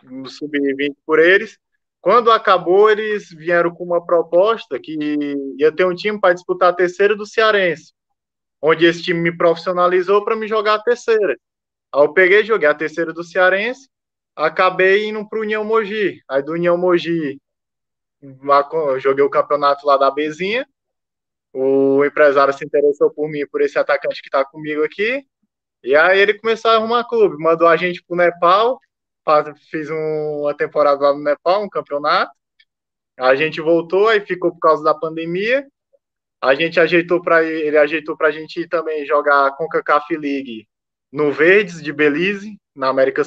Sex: male